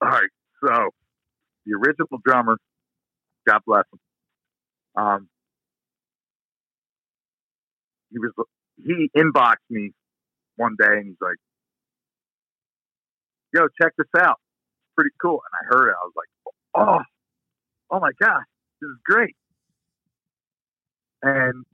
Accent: American